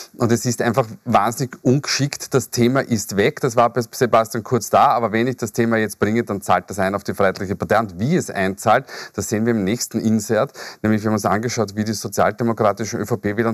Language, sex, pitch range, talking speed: German, male, 110-135 Hz, 220 wpm